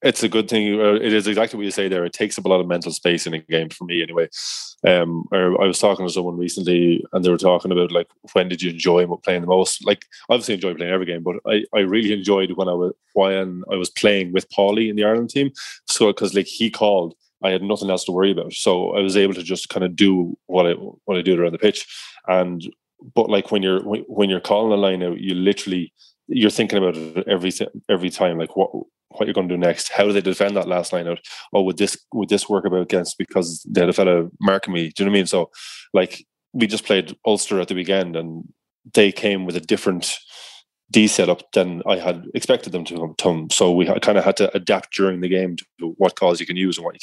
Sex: male